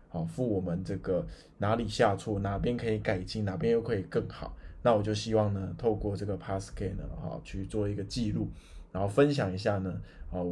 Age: 20-39